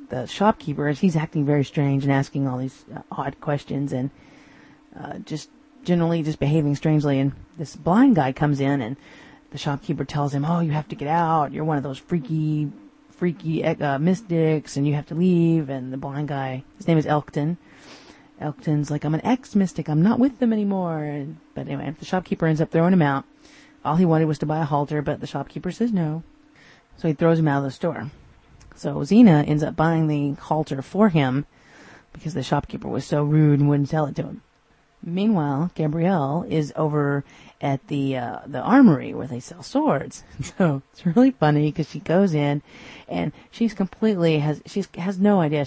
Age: 30-49